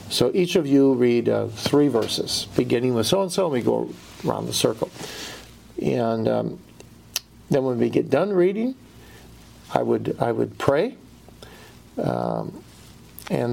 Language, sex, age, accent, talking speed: English, male, 50-69, American, 150 wpm